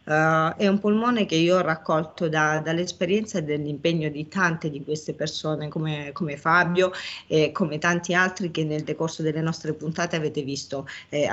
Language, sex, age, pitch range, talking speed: Italian, female, 40-59, 155-190 Hz, 180 wpm